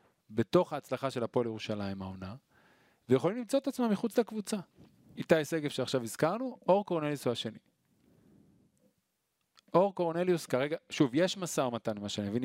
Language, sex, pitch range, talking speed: Hebrew, male, 115-165 Hz, 145 wpm